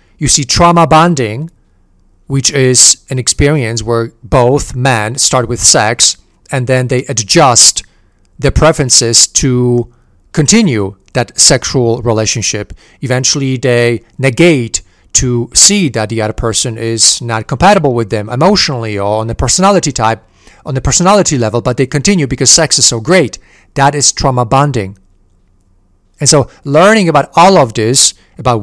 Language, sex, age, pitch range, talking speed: English, male, 40-59, 115-150 Hz, 145 wpm